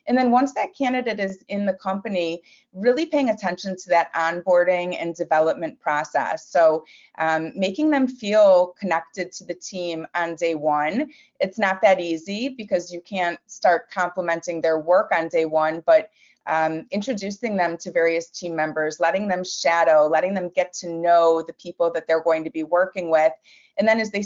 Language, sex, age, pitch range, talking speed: English, female, 30-49, 165-200 Hz, 180 wpm